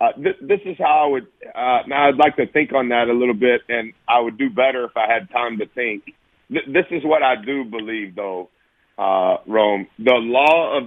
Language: English